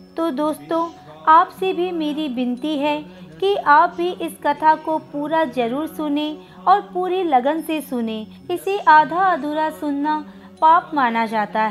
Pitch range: 235-345 Hz